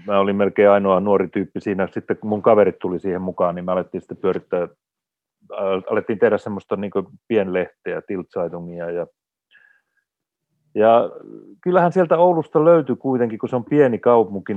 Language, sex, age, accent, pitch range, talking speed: Finnish, male, 30-49, native, 90-115 Hz, 145 wpm